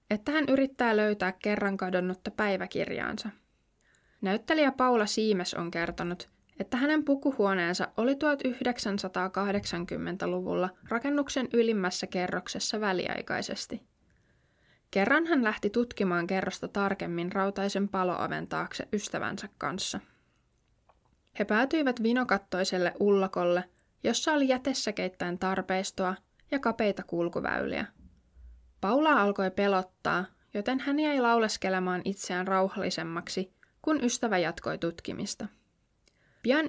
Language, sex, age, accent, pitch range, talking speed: Finnish, female, 20-39, native, 185-240 Hz, 95 wpm